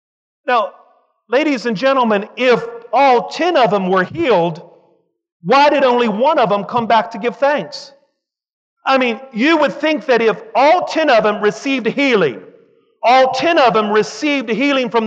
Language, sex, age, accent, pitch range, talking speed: English, male, 40-59, American, 185-260 Hz, 165 wpm